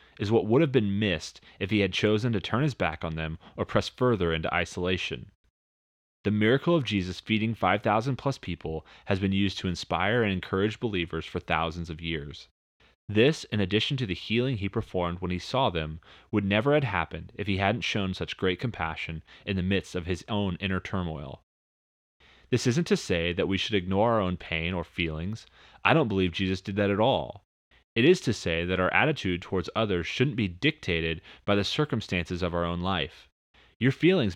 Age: 30-49